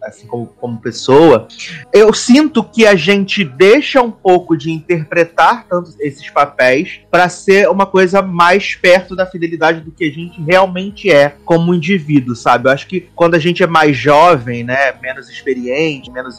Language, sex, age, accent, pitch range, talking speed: Portuguese, male, 30-49, Brazilian, 135-185 Hz, 170 wpm